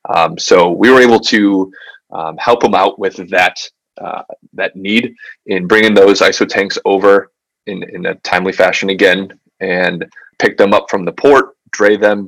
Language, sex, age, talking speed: English, male, 20-39, 170 wpm